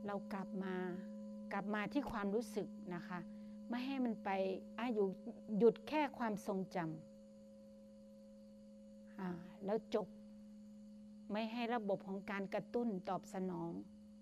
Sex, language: female, Thai